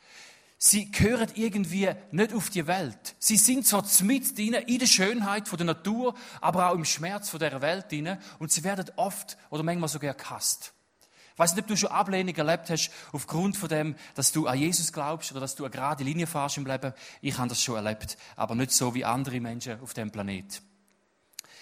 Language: English